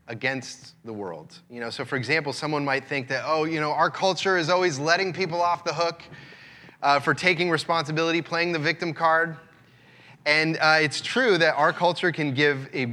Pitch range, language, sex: 135-180 Hz, English, male